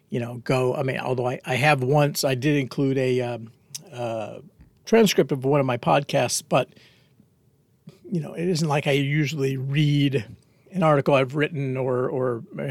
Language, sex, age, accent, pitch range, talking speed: English, male, 50-69, American, 130-170 Hz, 175 wpm